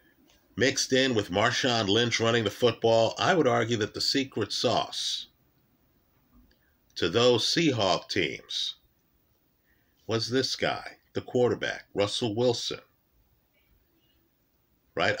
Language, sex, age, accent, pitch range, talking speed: English, male, 50-69, American, 105-130 Hz, 105 wpm